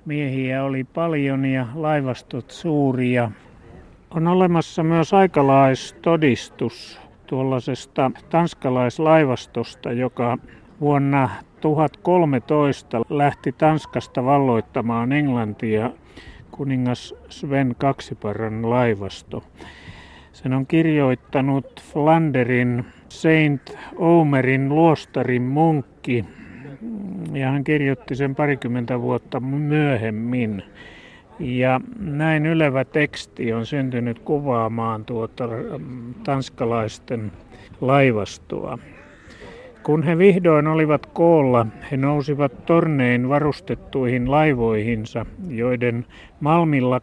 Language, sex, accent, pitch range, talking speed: Finnish, male, native, 120-150 Hz, 75 wpm